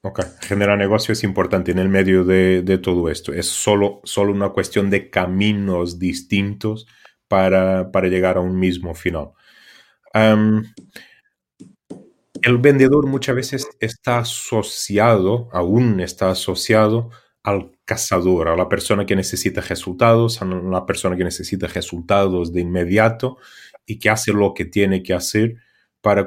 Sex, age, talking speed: male, 30-49, 140 wpm